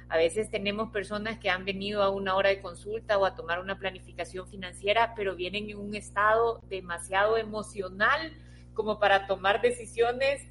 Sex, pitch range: female, 190-235 Hz